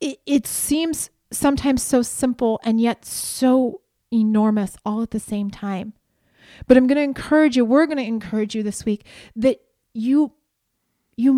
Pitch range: 225-280 Hz